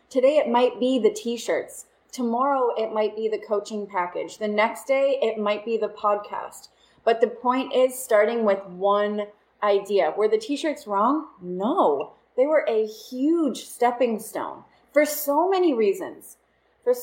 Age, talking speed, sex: 30-49, 160 wpm, female